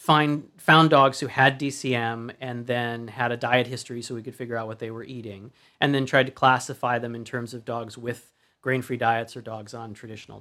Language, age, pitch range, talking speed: English, 30-49, 120-140 Hz, 220 wpm